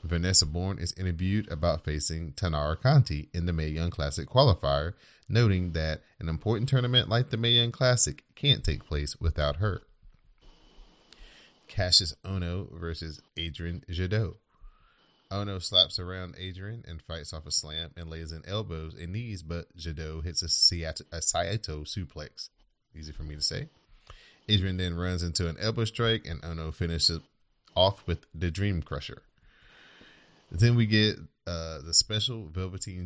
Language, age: English, 30-49